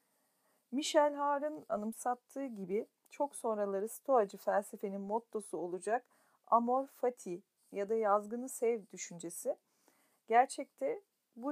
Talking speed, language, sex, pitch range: 100 wpm, Turkish, female, 200-250 Hz